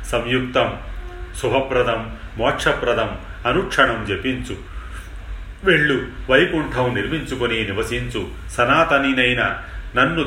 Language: Telugu